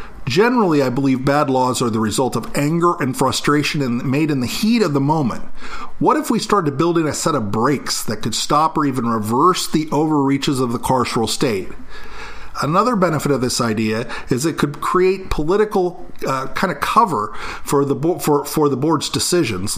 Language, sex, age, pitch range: English, male, 50-69, 125-165 Hz